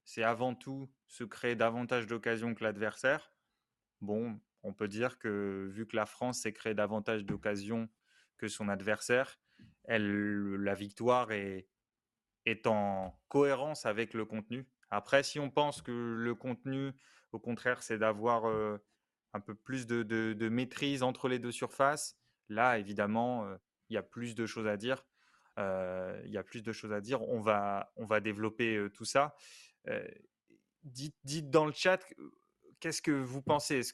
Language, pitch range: French, 105-130 Hz